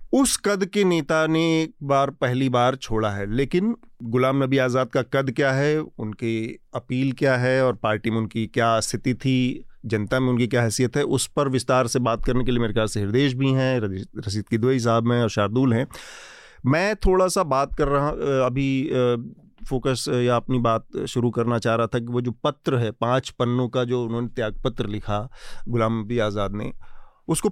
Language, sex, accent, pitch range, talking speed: Hindi, male, native, 120-150 Hz, 195 wpm